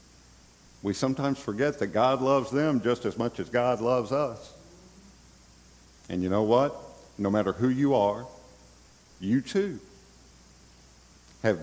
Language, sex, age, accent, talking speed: English, male, 50-69, American, 135 wpm